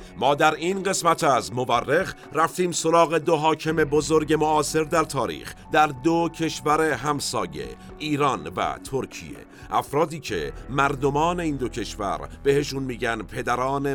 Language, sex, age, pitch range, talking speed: Persian, male, 50-69, 115-150 Hz, 130 wpm